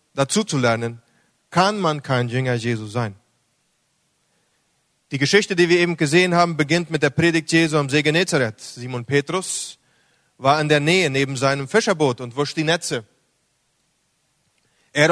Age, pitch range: 30-49, 140-180 Hz